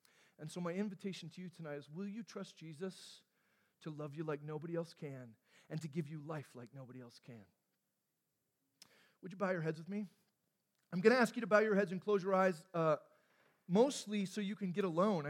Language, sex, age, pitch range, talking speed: English, male, 40-59, 175-220 Hz, 215 wpm